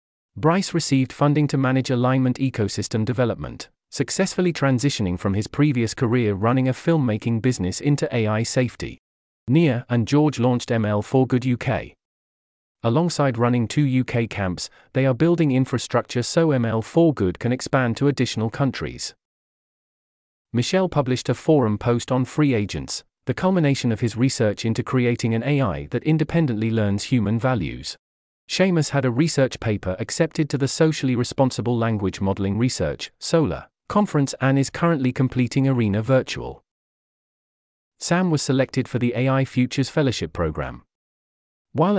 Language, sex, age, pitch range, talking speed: English, male, 40-59, 110-140 Hz, 135 wpm